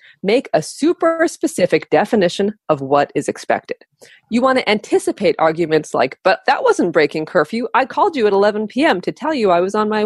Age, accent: 30-49, American